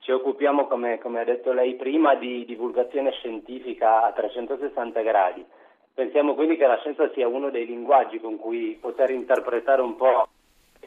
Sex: male